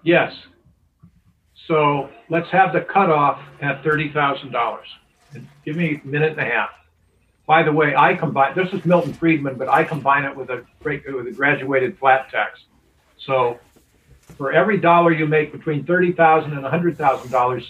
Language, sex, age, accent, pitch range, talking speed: English, male, 50-69, American, 135-165 Hz, 155 wpm